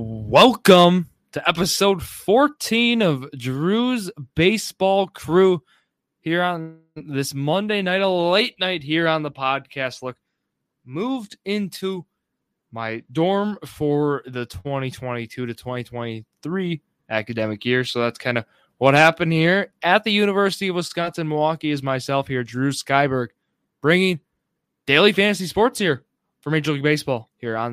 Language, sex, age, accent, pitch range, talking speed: English, male, 20-39, American, 130-185 Hz, 130 wpm